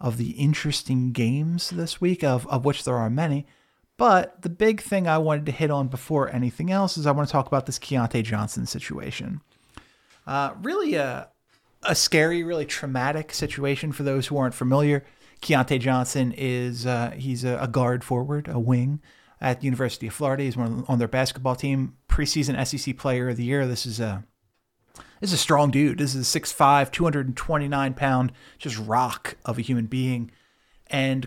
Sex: male